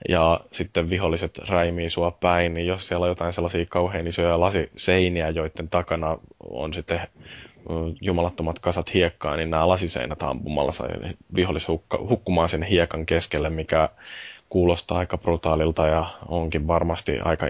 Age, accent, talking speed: 20-39, native, 135 wpm